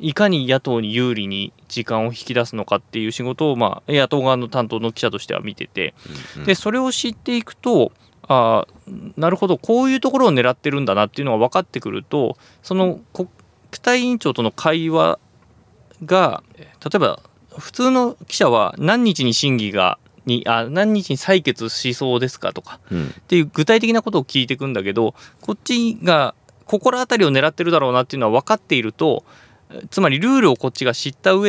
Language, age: Japanese, 20-39